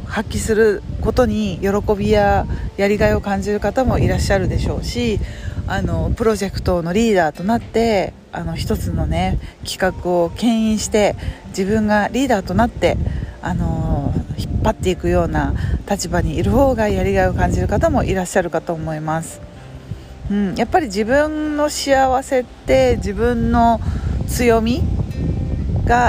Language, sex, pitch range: Japanese, female, 155-245 Hz